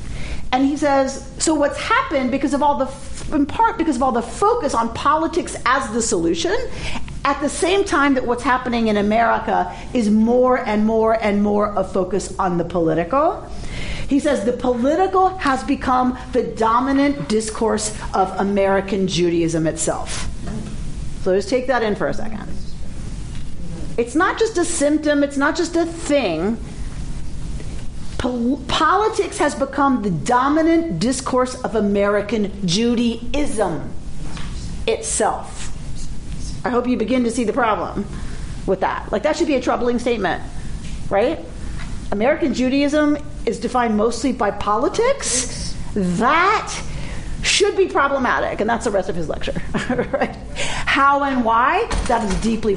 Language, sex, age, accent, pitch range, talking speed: English, female, 50-69, American, 220-290 Hz, 145 wpm